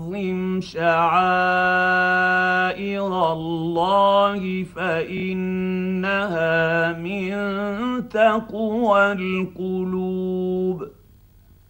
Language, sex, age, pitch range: Arabic, male, 50-69, 170-205 Hz